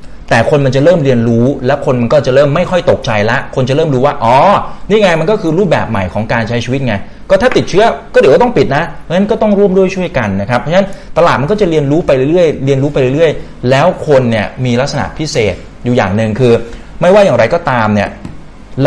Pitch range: 105-145 Hz